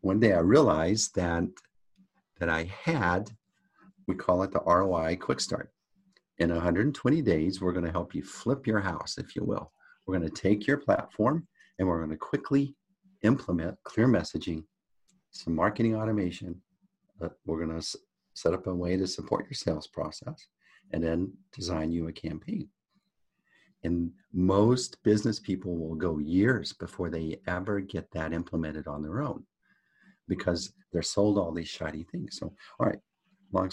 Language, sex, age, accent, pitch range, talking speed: English, male, 50-69, American, 85-105 Hz, 160 wpm